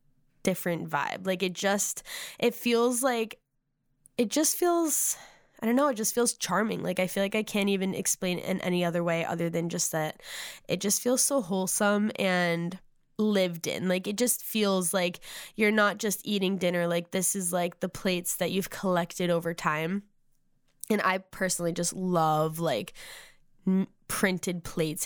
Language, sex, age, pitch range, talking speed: English, female, 10-29, 175-205 Hz, 170 wpm